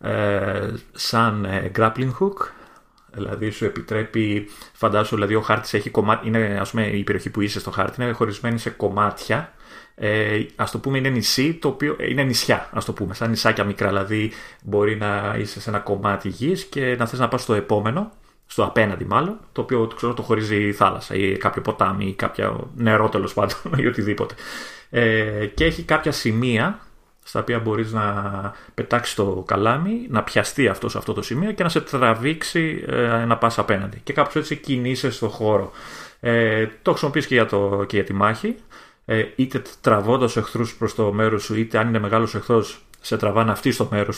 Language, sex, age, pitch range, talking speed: Greek, male, 30-49, 105-125 Hz, 185 wpm